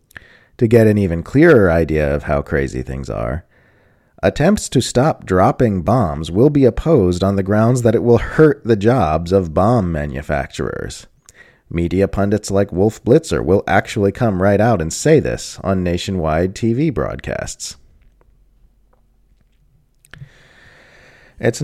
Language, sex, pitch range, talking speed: English, male, 85-120 Hz, 135 wpm